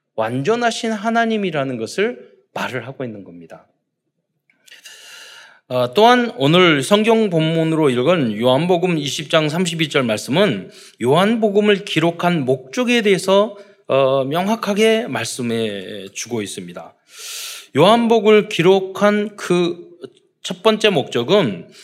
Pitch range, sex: 130-215 Hz, male